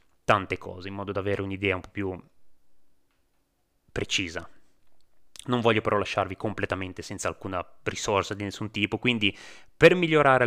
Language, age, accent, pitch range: Italian, 20-39, native, 95-120 Hz